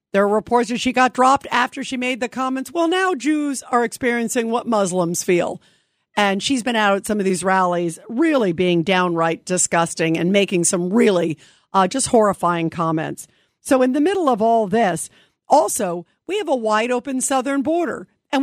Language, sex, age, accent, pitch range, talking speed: English, female, 50-69, American, 215-295 Hz, 185 wpm